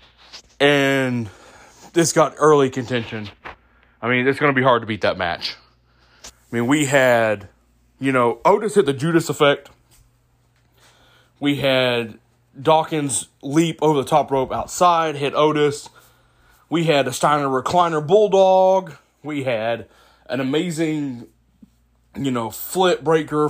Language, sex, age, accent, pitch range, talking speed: English, male, 20-39, American, 115-160 Hz, 135 wpm